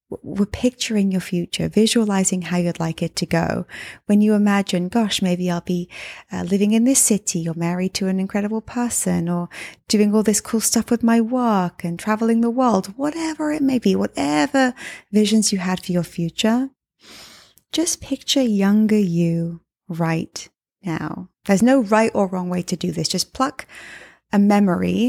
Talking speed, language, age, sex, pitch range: 170 wpm, English, 20-39, female, 170-215 Hz